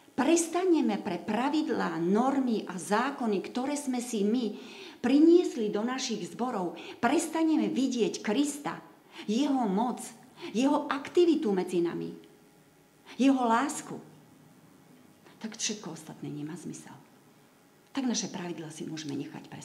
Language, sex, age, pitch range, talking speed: Slovak, female, 40-59, 180-250 Hz, 115 wpm